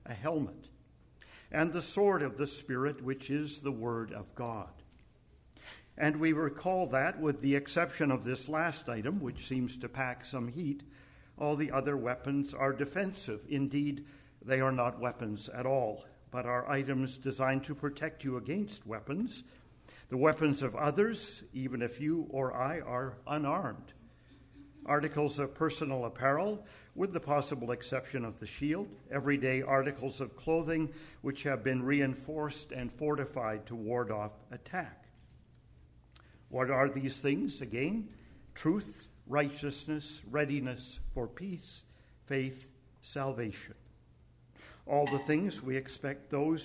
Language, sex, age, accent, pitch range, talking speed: English, male, 50-69, American, 125-150 Hz, 140 wpm